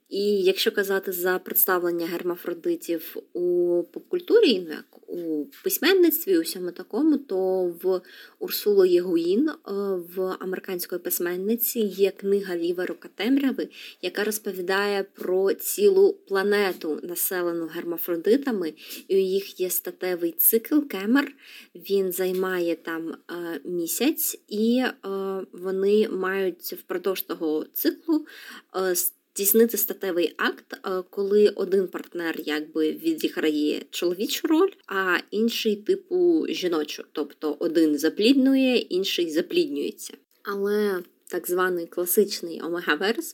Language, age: Ukrainian, 20-39